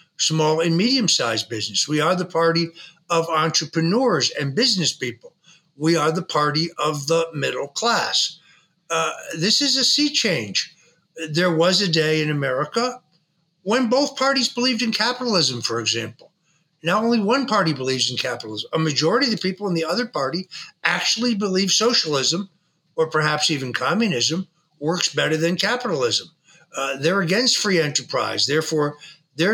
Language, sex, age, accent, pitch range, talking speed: English, male, 60-79, American, 150-195 Hz, 150 wpm